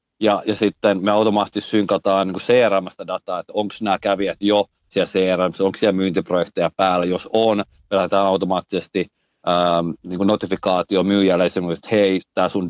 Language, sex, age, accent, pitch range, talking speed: Finnish, male, 30-49, native, 90-110 Hz, 160 wpm